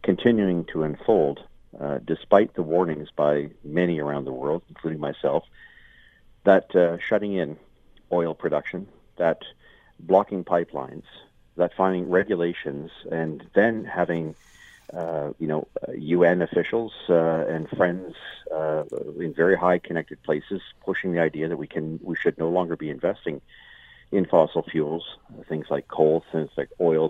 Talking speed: 140 wpm